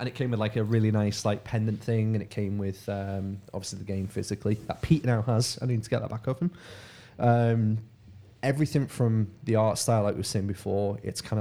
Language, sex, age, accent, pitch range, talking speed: English, male, 20-39, British, 100-115 Hz, 230 wpm